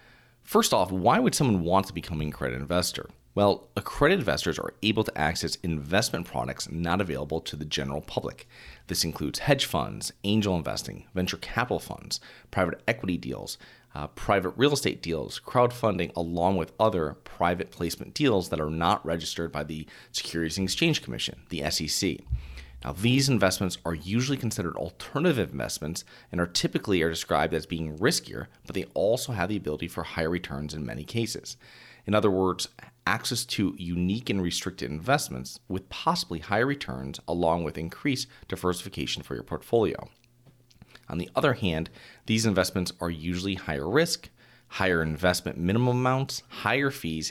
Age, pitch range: 30-49, 80-110 Hz